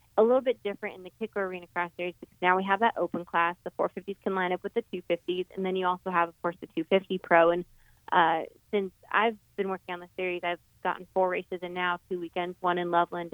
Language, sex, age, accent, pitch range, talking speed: English, female, 20-39, American, 175-195 Hz, 250 wpm